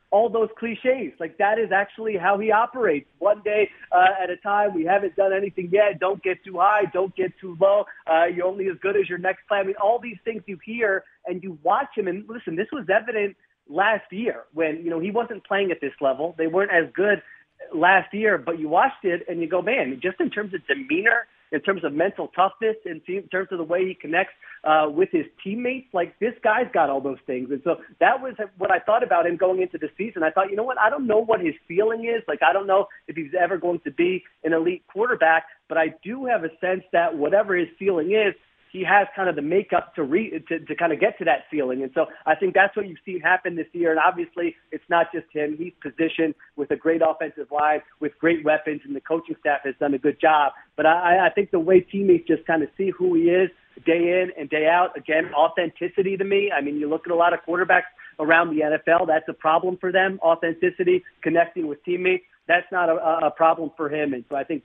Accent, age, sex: American, 40-59, male